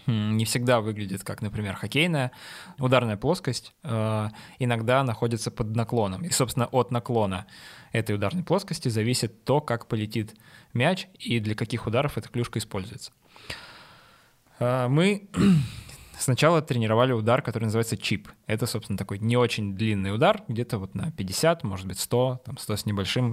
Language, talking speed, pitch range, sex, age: Russian, 145 wpm, 110-130 Hz, male, 20-39